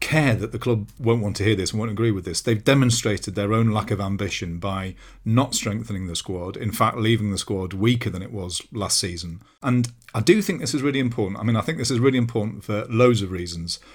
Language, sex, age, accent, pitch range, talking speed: English, male, 40-59, British, 100-130 Hz, 245 wpm